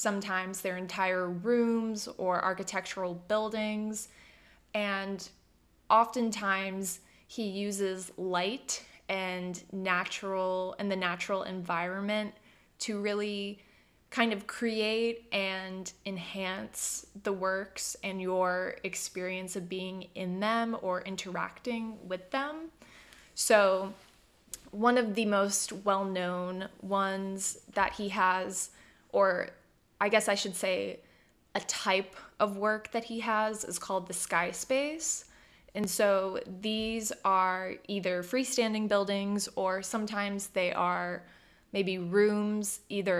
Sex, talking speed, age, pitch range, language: female, 110 wpm, 20-39, 185-215 Hz, English